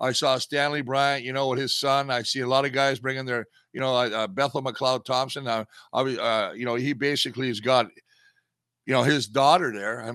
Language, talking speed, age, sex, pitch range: English, 225 wpm, 50-69, male, 125-150 Hz